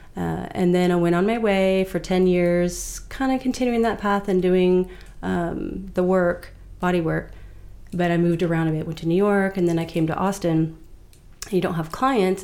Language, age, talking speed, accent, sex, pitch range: English, 30-49, 205 wpm, American, female, 170-195 Hz